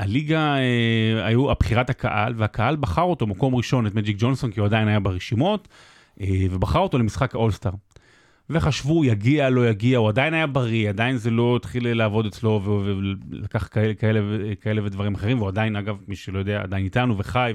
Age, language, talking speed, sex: 30-49, Hebrew, 170 wpm, male